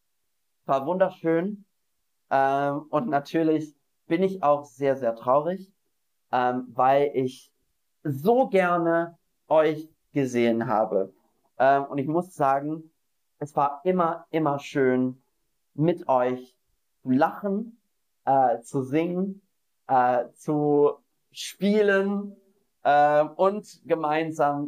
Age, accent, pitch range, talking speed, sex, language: 30-49, German, 135-170 Hz, 100 wpm, male, German